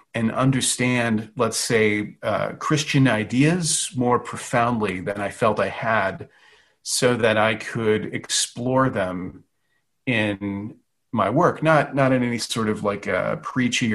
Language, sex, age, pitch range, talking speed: English, male, 40-59, 110-135 Hz, 140 wpm